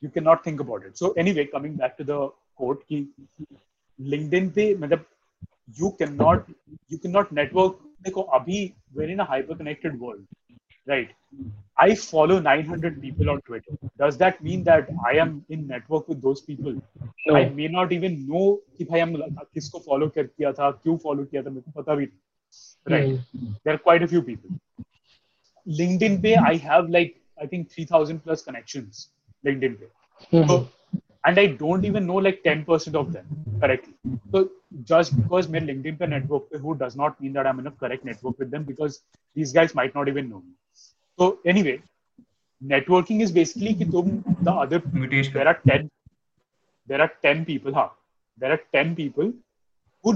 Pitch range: 140-175 Hz